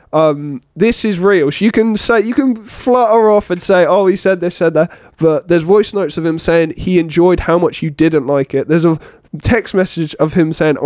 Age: 20-39